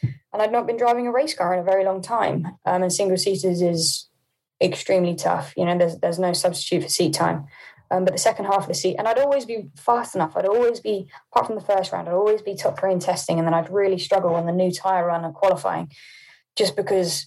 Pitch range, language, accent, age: 175-195 Hz, English, British, 10-29